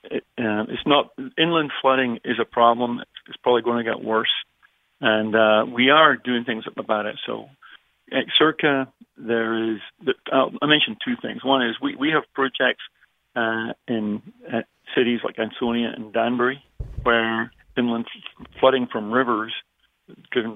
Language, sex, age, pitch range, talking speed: English, male, 40-59, 115-130 Hz, 160 wpm